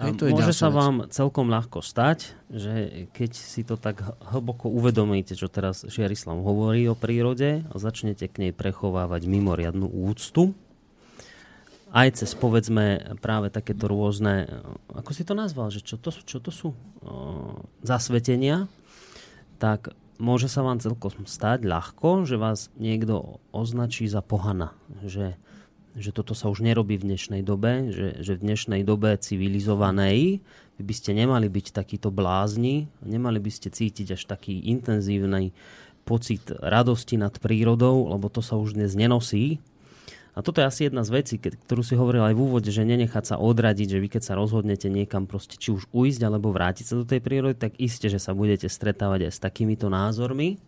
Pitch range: 100-120 Hz